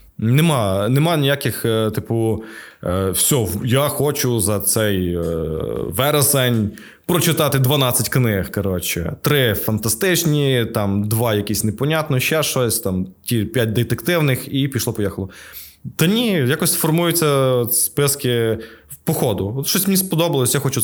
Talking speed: 115 wpm